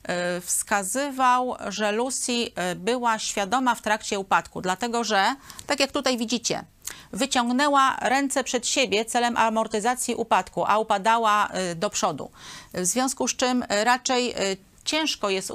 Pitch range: 190-245 Hz